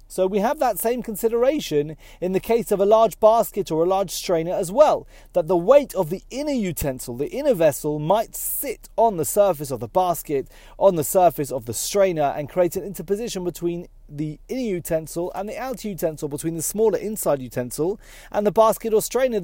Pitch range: 150-210 Hz